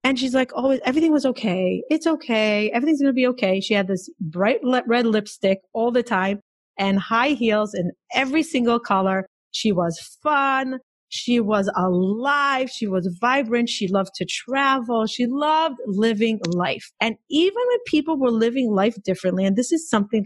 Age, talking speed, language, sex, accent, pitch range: 30-49, 175 wpm, English, female, American, 195-265 Hz